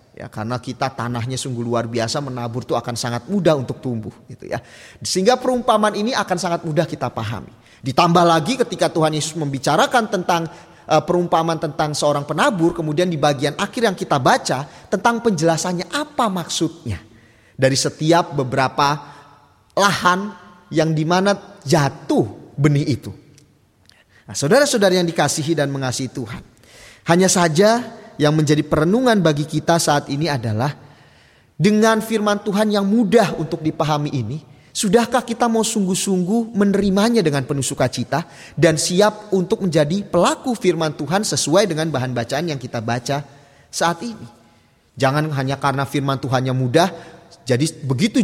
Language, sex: Indonesian, male